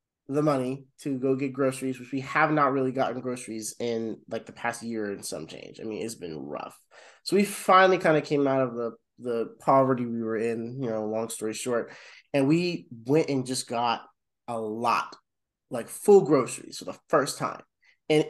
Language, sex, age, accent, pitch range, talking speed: English, male, 20-39, American, 130-180 Hz, 200 wpm